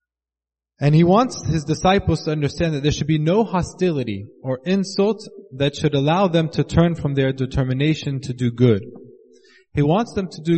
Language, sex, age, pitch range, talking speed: English, male, 20-39, 135-175 Hz, 180 wpm